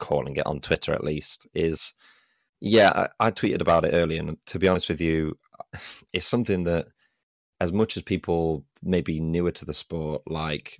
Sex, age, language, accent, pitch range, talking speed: male, 20-39, English, British, 75-85 Hz, 185 wpm